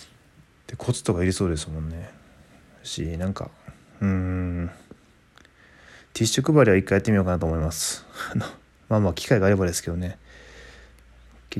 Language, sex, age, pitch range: Japanese, male, 20-39, 70-110 Hz